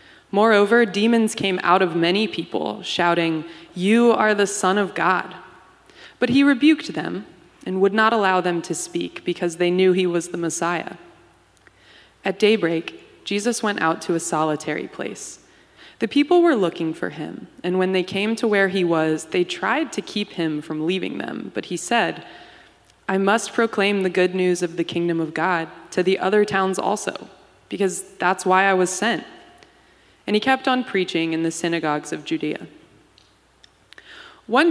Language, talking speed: English, 170 wpm